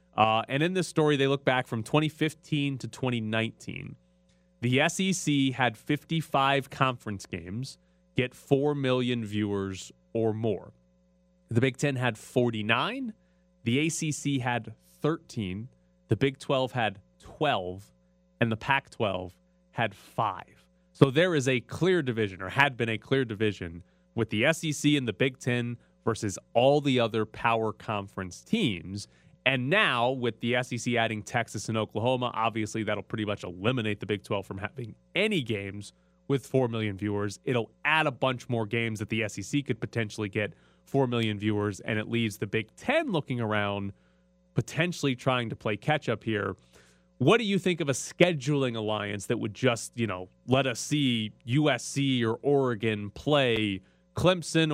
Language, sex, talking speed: English, male, 160 wpm